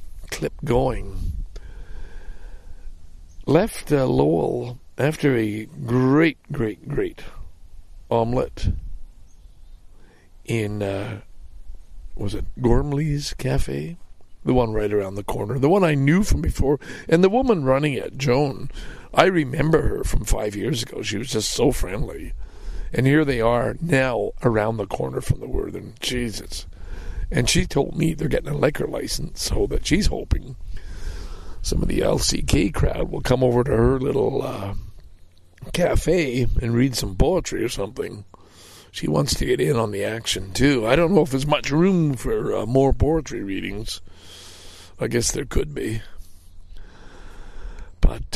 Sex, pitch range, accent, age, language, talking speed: male, 85-135 Hz, American, 60-79, English, 145 wpm